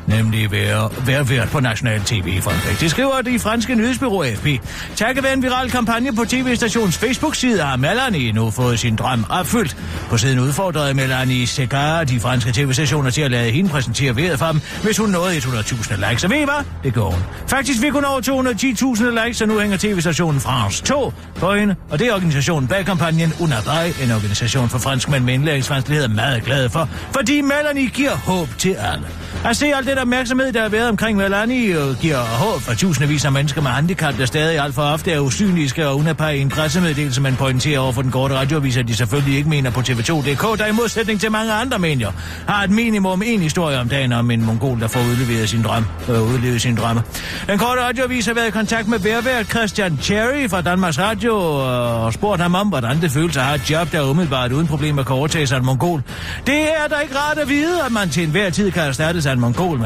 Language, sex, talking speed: Danish, male, 215 wpm